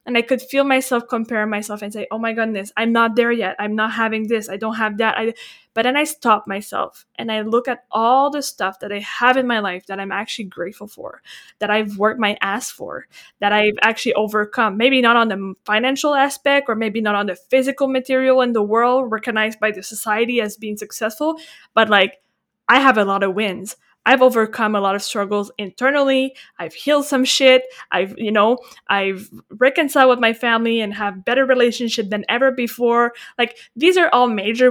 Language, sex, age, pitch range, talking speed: English, female, 20-39, 210-250 Hz, 205 wpm